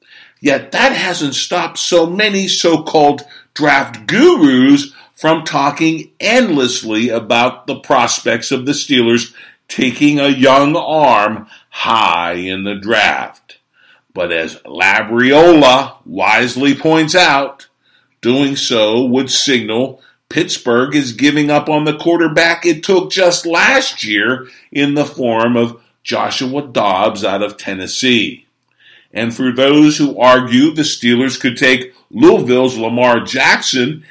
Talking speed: 120 wpm